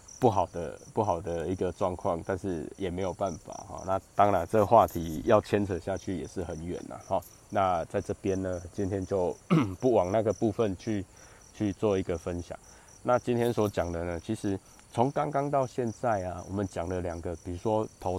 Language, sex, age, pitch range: Chinese, male, 20-39, 90-110 Hz